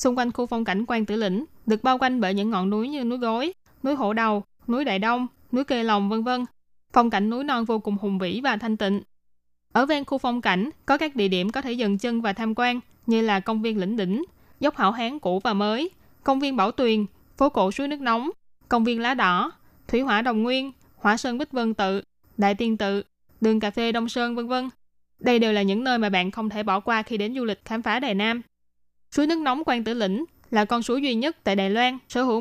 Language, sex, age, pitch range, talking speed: Vietnamese, female, 20-39, 210-255 Hz, 250 wpm